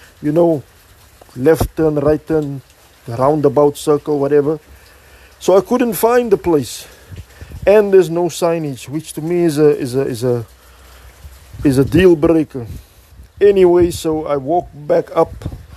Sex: male